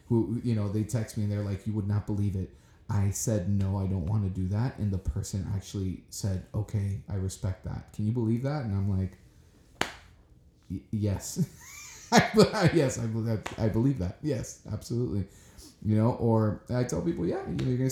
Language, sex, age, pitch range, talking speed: English, male, 30-49, 95-115 Hz, 195 wpm